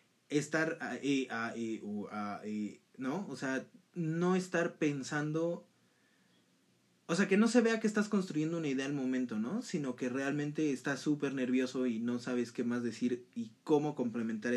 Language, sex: Spanish, male